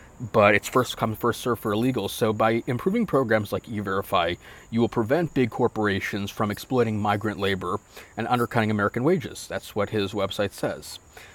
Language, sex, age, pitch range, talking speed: English, male, 30-49, 100-115 Hz, 170 wpm